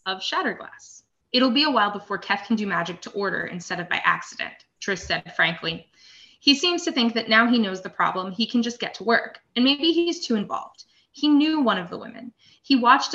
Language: English